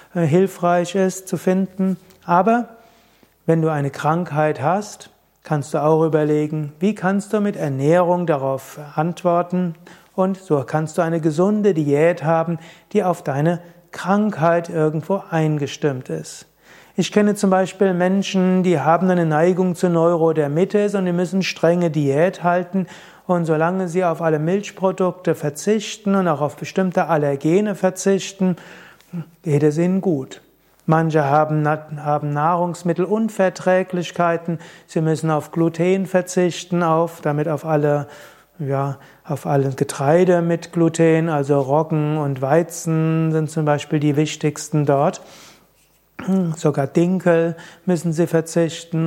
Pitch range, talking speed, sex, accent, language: 155-185 Hz, 125 wpm, male, German, German